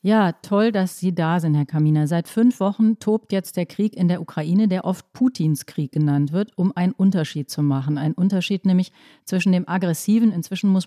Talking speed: 205 wpm